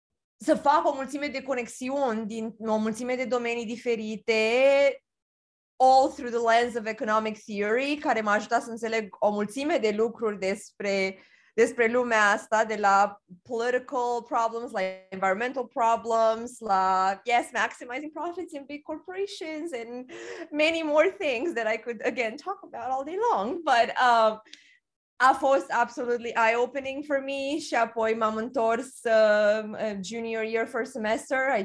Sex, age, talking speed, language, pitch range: female, 20-39, 150 wpm, Romanian, 205-250 Hz